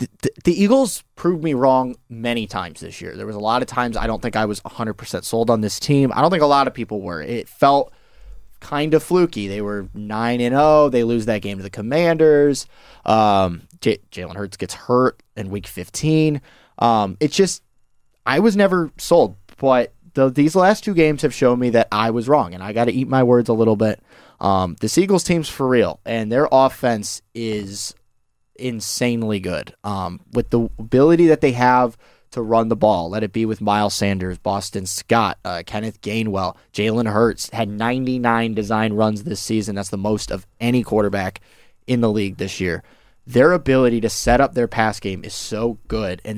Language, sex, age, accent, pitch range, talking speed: English, male, 20-39, American, 105-125 Hz, 200 wpm